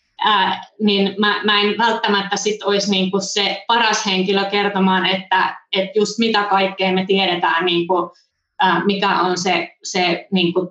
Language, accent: Finnish, native